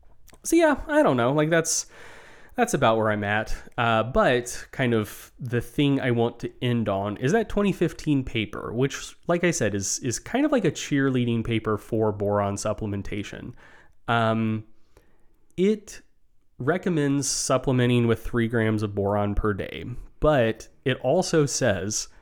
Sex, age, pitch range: male, 30-49, 105-150 Hz